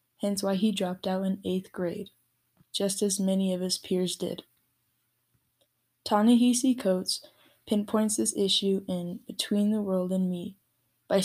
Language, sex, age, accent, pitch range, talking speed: English, female, 10-29, American, 180-205 Hz, 145 wpm